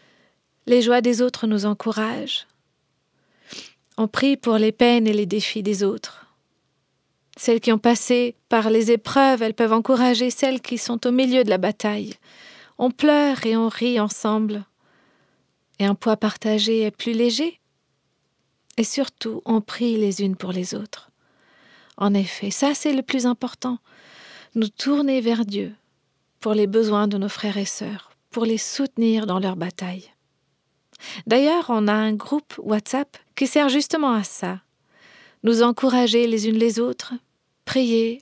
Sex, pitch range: female, 215-245 Hz